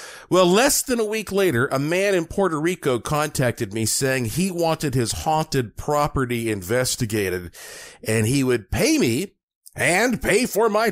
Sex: male